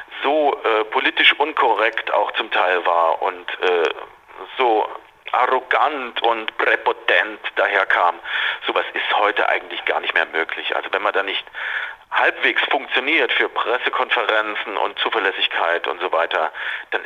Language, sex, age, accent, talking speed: German, male, 40-59, German, 135 wpm